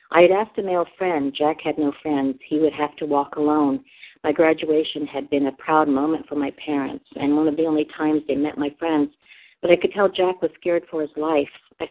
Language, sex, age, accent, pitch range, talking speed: English, female, 50-69, American, 140-160 Hz, 235 wpm